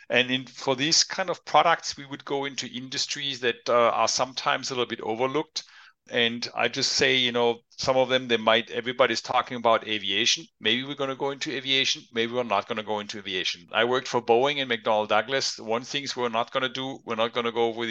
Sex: male